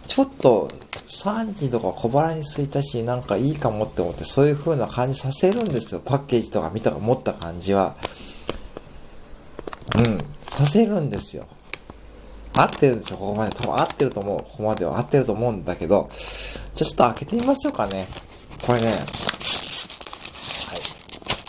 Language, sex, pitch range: Japanese, male, 100-140 Hz